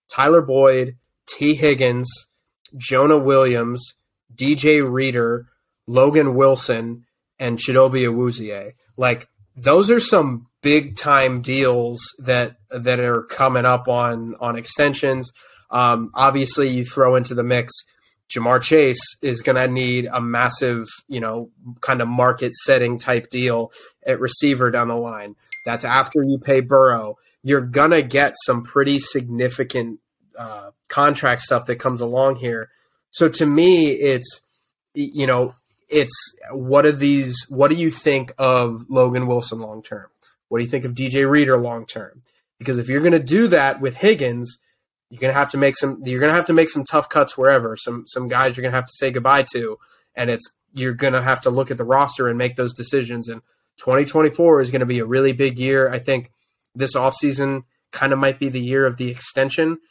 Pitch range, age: 120-140 Hz, 20-39